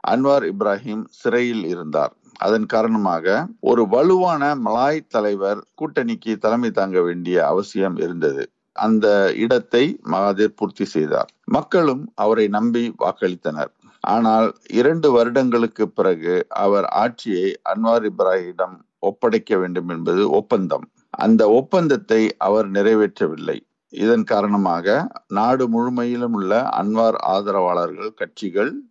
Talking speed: 100 wpm